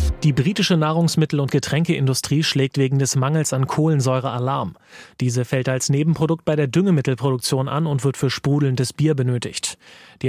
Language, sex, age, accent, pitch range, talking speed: German, male, 30-49, German, 130-155 Hz, 155 wpm